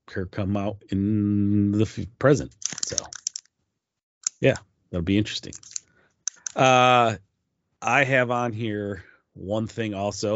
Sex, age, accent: male, 30-49, American